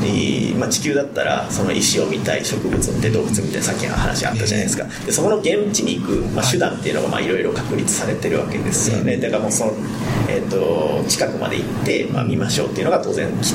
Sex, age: male, 40-59